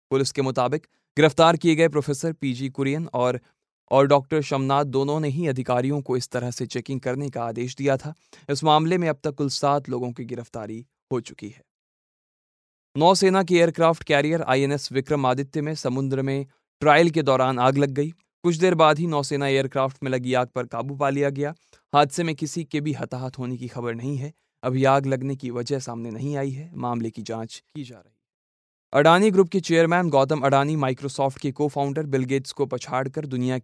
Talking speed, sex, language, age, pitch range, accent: 200 wpm, male, Hindi, 20-39, 130-155 Hz, native